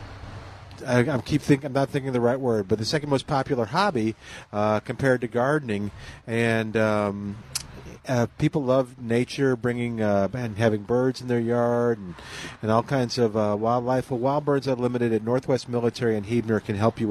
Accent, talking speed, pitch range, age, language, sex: American, 170 wpm, 115-145 Hz, 40-59, English, male